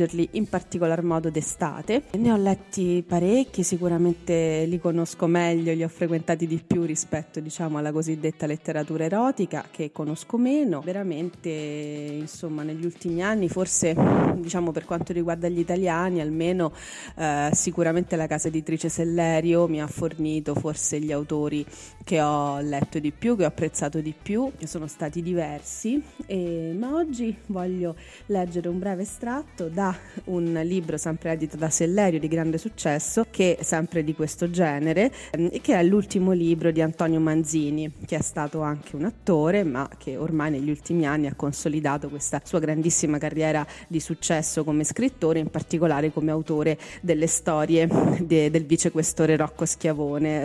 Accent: native